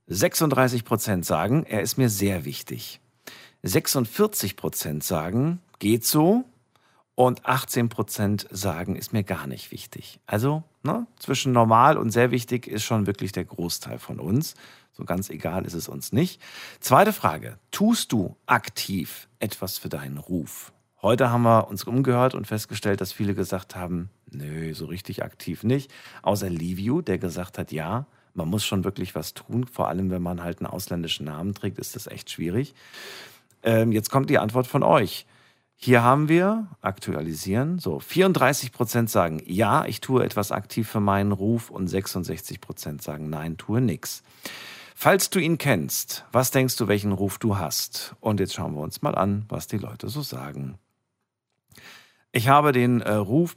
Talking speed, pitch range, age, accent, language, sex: 160 wpm, 95-125 Hz, 50-69, German, German, male